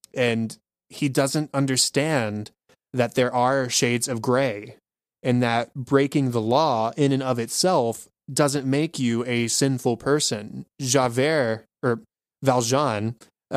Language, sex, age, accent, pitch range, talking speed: English, male, 20-39, American, 115-135 Hz, 125 wpm